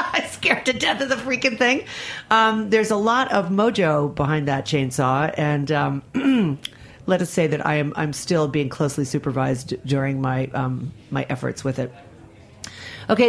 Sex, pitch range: female, 140-215 Hz